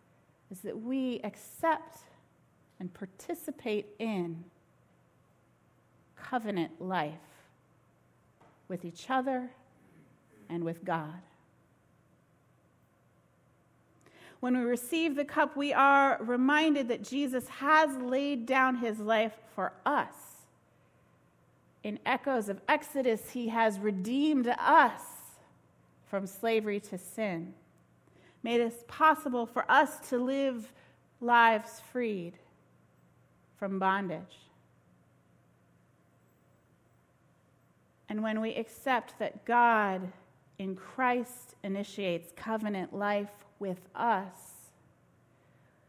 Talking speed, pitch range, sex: 90 wpm, 185-250 Hz, female